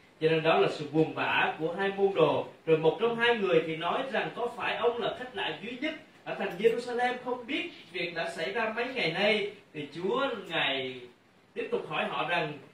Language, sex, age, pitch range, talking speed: Vietnamese, male, 30-49, 160-230 Hz, 220 wpm